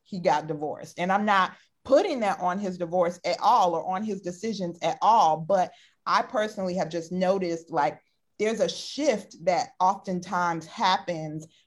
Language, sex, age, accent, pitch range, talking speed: English, female, 30-49, American, 165-200 Hz, 160 wpm